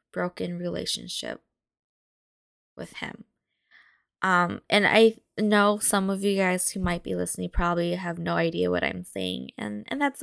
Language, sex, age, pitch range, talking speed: English, female, 10-29, 170-240 Hz, 155 wpm